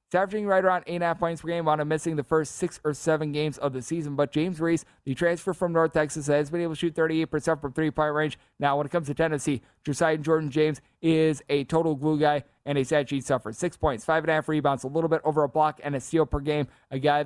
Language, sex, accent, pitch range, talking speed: English, male, American, 145-170 Hz, 255 wpm